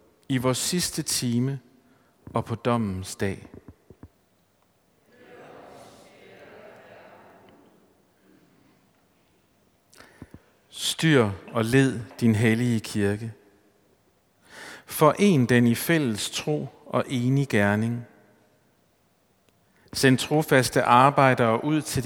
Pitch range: 110-140 Hz